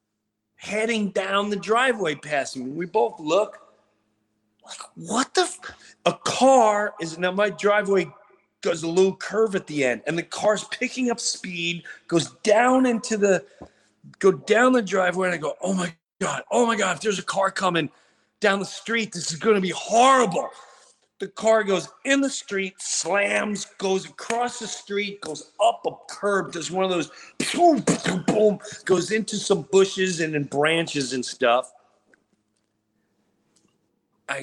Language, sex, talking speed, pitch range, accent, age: English, male, 160 wpm, 135-210 Hz, American, 40-59